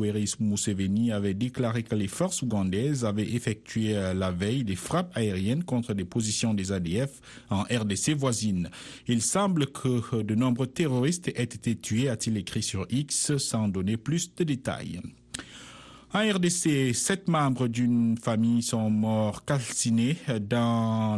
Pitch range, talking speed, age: 105-135 Hz, 145 wpm, 50-69